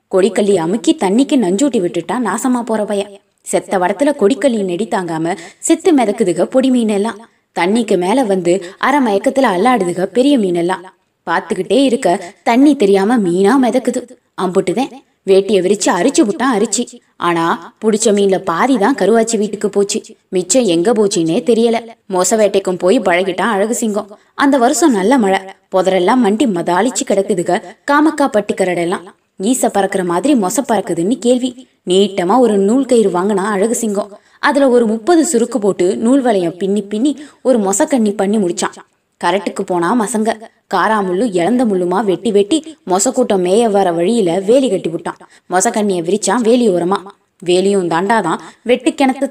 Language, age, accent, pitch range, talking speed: Tamil, 20-39, native, 190-245 Hz, 130 wpm